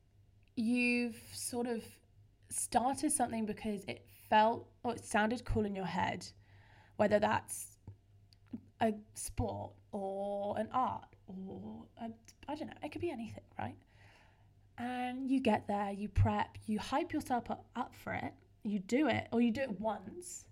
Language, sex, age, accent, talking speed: English, female, 10-29, British, 150 wpm